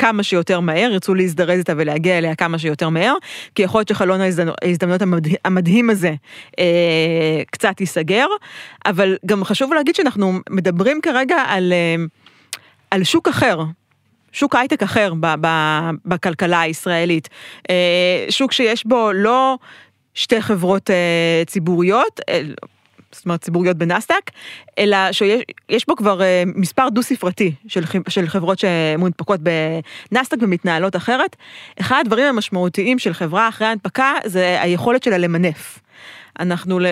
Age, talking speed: 30-49, 135 wpm